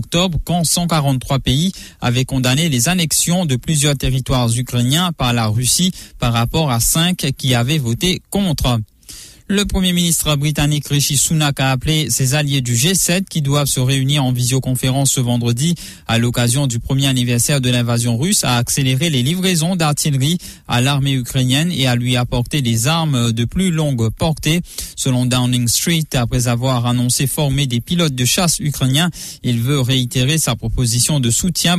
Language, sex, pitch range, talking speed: English, male, 125-160 Hz, 165 wpm